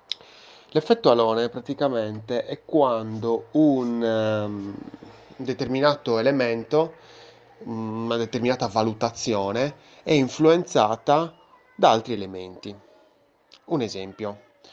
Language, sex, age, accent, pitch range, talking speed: Italian, male, 20-39, native, 105-125 Hz, 80 wpm